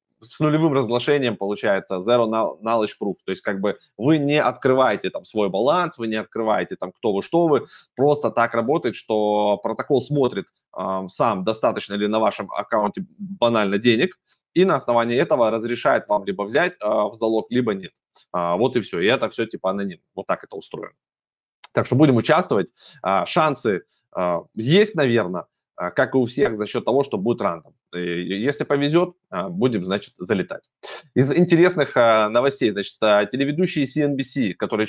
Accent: native